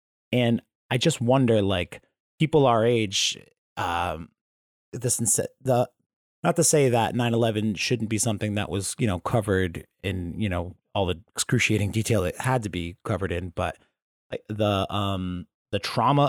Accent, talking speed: American, 160 wpm